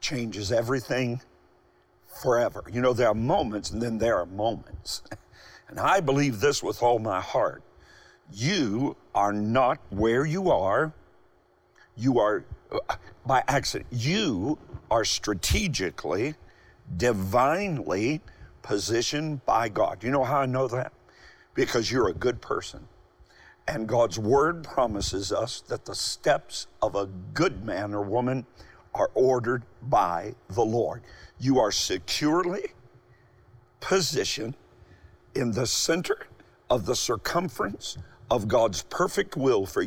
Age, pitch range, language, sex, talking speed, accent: 50-69, 115-145 Hz, English, male, 125 wpm, American